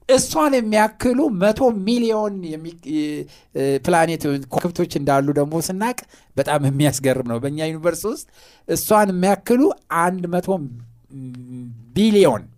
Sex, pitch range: male, 125-190 Hz